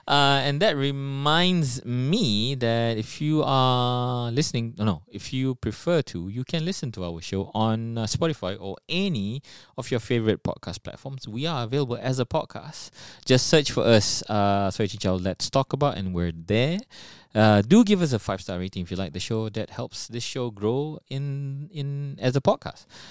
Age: 20-39